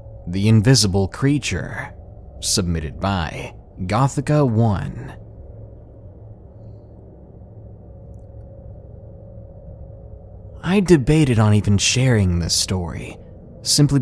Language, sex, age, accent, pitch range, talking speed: English, male, 30-49, American, 100-145 Hz, 65 wpm